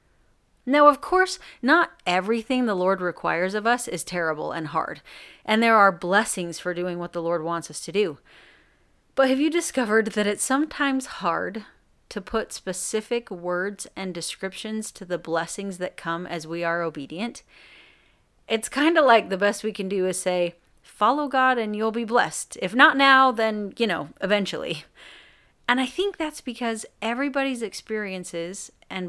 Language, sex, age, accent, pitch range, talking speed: English, female, 30-49, American, 180-240 Hz, 170 wpm